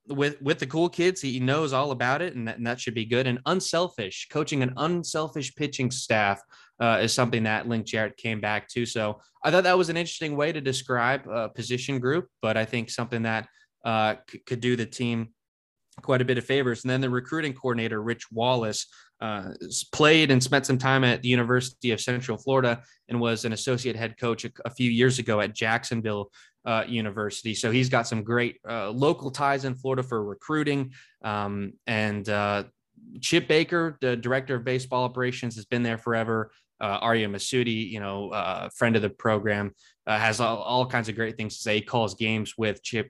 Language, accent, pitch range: English, American, 110-135 Hz